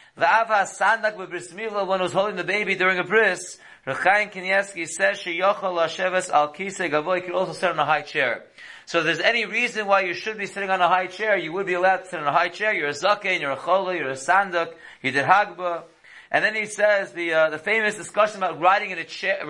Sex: male